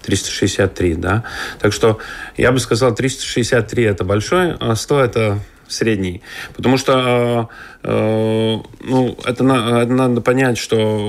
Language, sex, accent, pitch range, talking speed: Russian, male, native, 100-120 Hz, 135 wpm